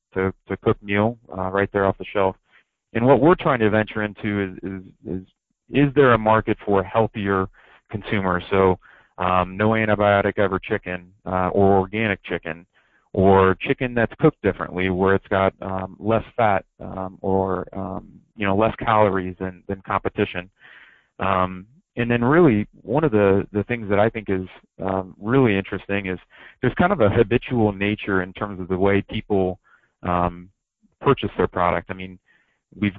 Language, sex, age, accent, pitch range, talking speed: English, male, 30-49, American, 95-110 Hz, 170 wpm